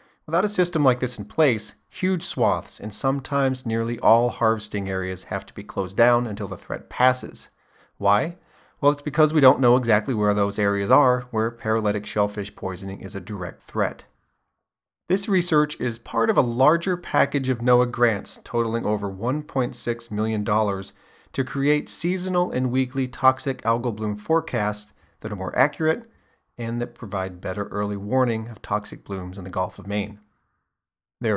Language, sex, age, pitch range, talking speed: English, male, 40-59, 100-130 Hz, 170 wpm